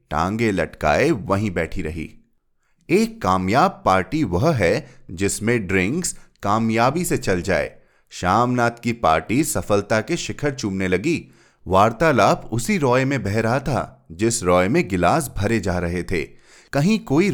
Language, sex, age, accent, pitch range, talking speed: Hindi, male, 30-49, native, 95-130 Hz, 140 wpm